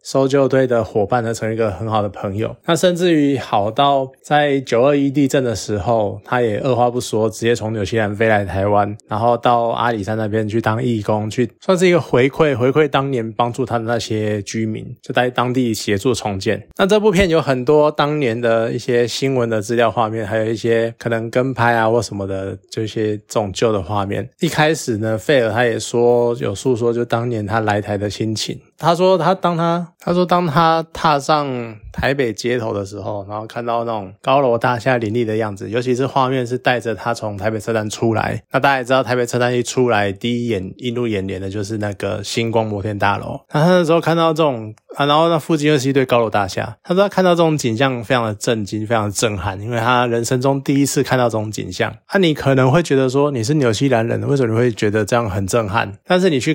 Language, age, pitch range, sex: Chinese, 20-39, 110-135 Hz, male